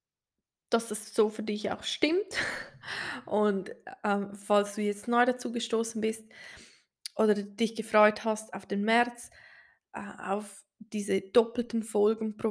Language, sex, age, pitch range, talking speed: German, female, 20-39, 205-245 Hz, 140 wpm